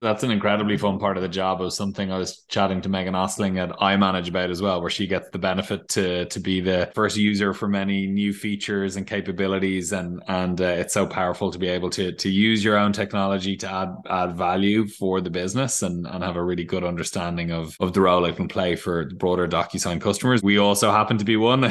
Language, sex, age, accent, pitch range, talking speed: English, male, 20-39, Irish, 95-105 Hz, 235 wpm